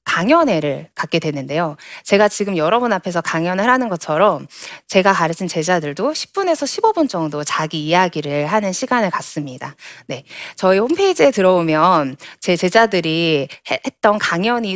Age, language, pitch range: 20-39, Korean, 155-230 Hz